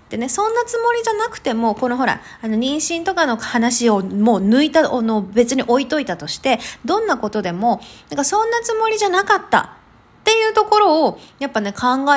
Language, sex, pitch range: Japanese, female, 220-370 Hz